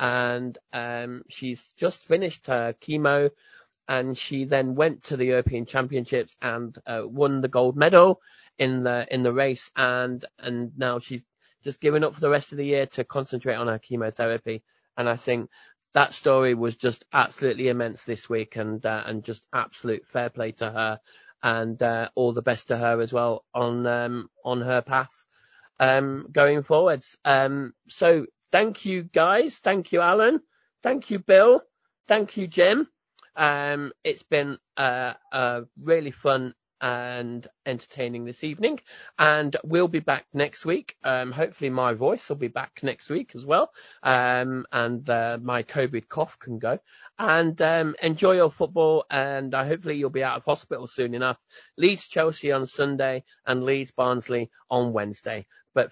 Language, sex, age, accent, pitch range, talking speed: English, male, 30-49, British, 120-150 Hz, 170 wpm